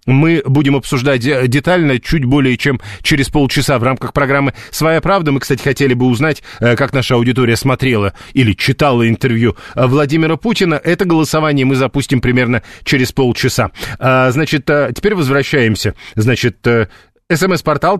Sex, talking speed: male, 135 wpm